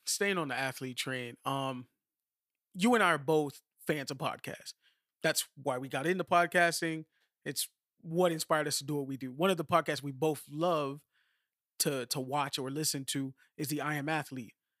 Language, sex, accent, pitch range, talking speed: English, male, American, 145-185 Hz, 190 wpm